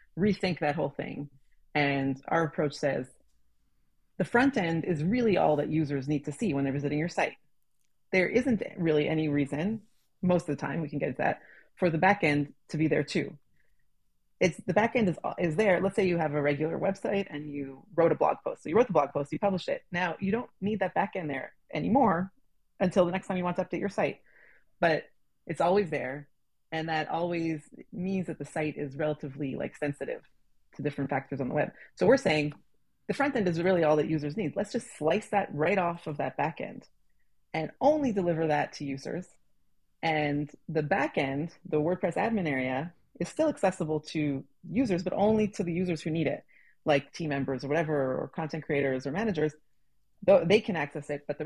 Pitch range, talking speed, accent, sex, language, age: 145-190 Hz, 210 wpm, American, female, English, 30-49